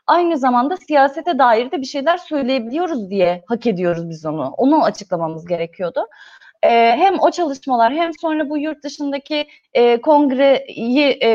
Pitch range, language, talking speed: 210-300 Hz, Turkish, 150 wpm